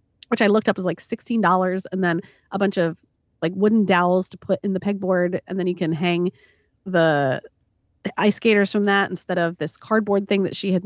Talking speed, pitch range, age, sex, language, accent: 210 wpm, 175-220 Hz, 30-49, female, English, American